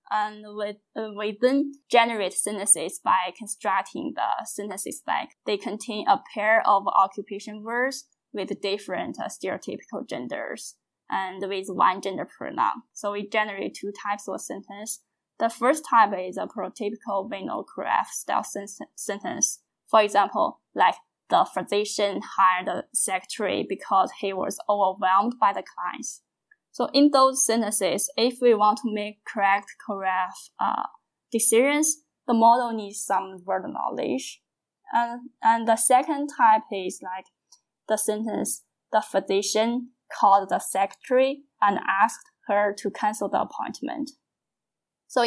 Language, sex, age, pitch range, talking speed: English, female, 10-29, 200-245 Hz, 135 wpm